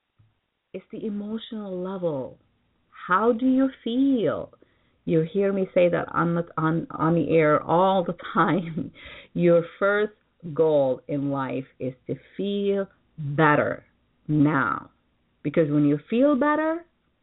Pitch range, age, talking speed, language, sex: 145-210 Hz, 40-59, 130 wpm, English, female